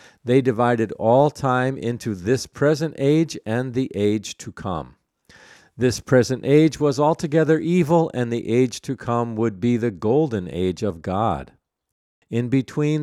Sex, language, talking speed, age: male, English, 150 wpm, 50-69